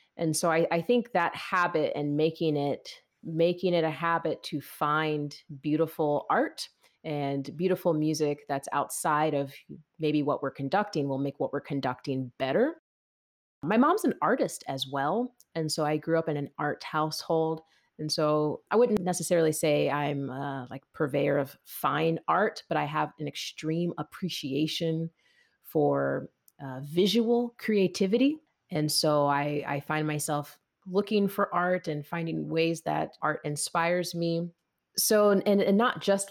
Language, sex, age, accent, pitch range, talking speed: English, female, 30-49, American, 140-170 Hz, 155 wpm